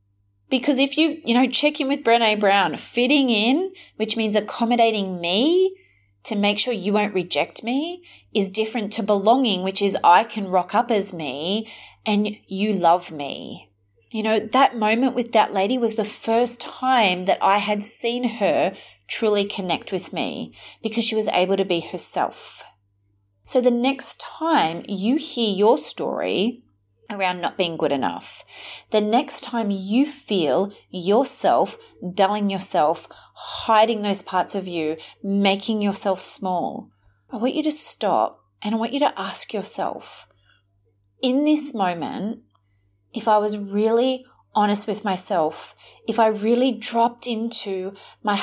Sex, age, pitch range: female, 30-49, 185-240 Hz